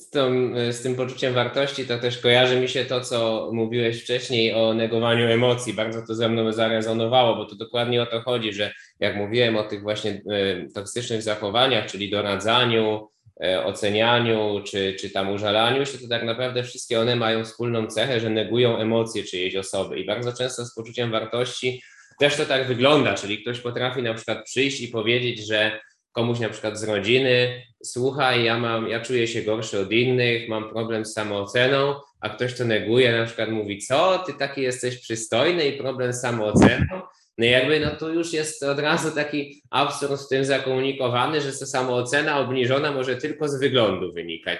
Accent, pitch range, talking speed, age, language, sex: native, 110-125 Hz, 180 wpm, 20-39, Polish, male